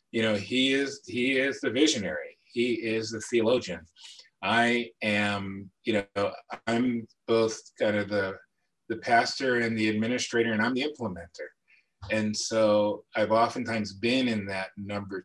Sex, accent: male, American